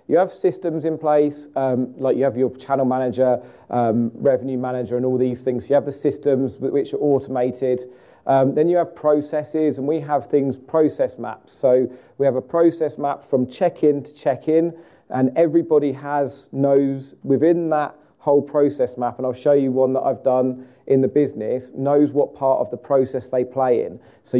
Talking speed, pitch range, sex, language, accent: 190 wpm, 130-150 Hz, male, English, British